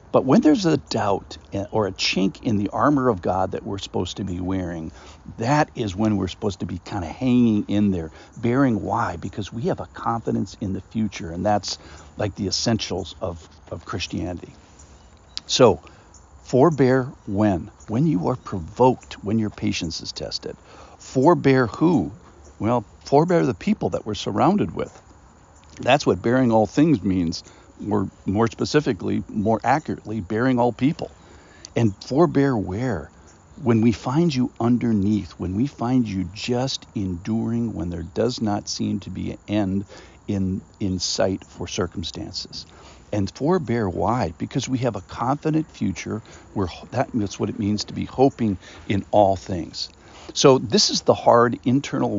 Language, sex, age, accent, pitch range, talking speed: English, male, 60-79, American, 90-120 Hz, 160 wpm